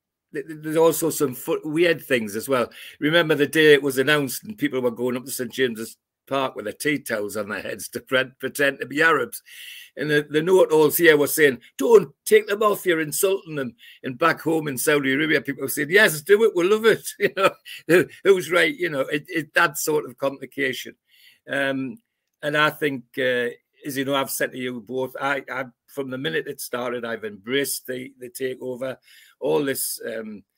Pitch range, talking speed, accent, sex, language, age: 130-175 Hz, 200 wpm, British, male, English, 60-79